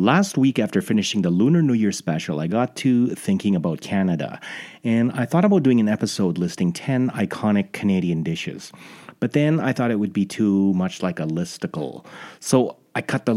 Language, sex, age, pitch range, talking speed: English, male, 30-49, 95-130 Hz, 195 wpm